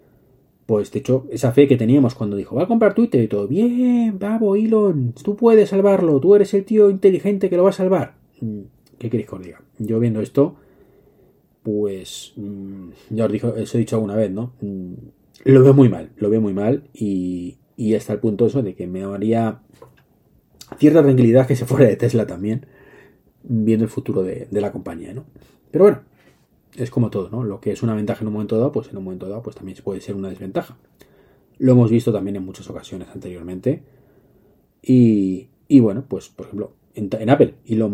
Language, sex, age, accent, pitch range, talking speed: Spanish, male, 30-49, Spanish, 100-135 Hz, 200 wpm